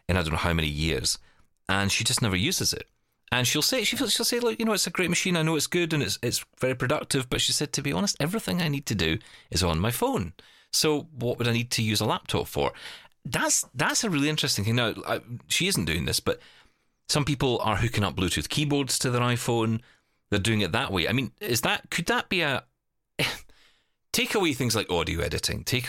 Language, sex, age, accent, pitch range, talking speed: English, male, 30-49, British, 85-140 Hz, 235 wpm